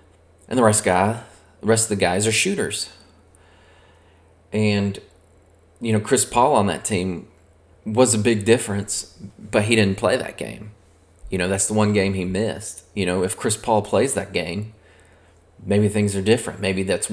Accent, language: American, English